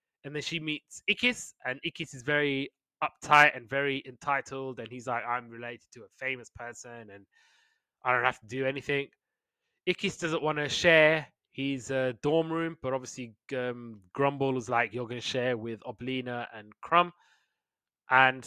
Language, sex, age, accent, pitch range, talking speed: English, male, 20-39, British, 125-160 Hz, 170 wpm